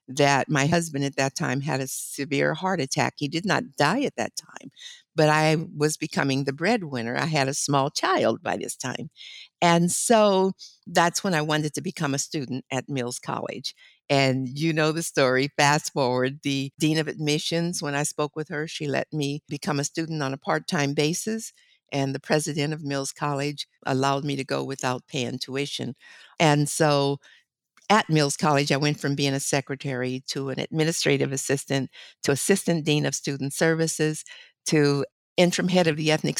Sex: female